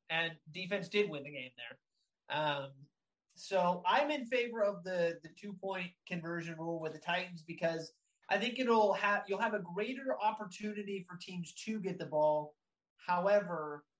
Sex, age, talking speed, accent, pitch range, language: male, 30-49, 165 wpm, American, 150-195 Hz, English